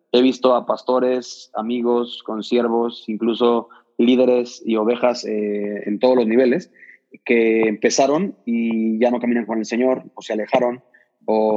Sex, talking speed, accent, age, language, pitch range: male, 145 wpm, Mexican, 20-39, Spanish, 115-130 Hz